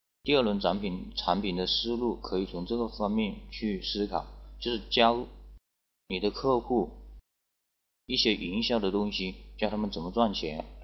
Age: 30-49